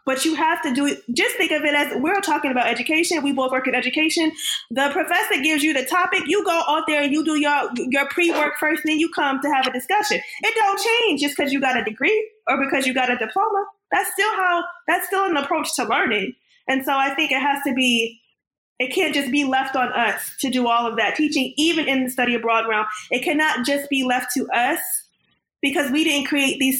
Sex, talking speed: female, 240 wpm